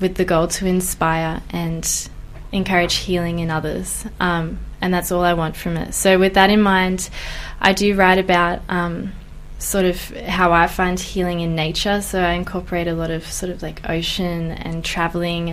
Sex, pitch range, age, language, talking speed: female, 170-190 Hz, 20-39, English, 185 wpm